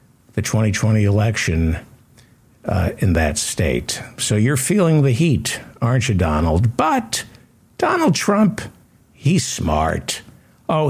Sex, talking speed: male, 115 wpm